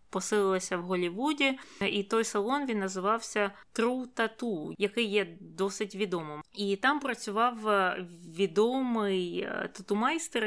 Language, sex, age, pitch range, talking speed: Ukrainian, female, 20-39, 180-215 Hz, 110 wpm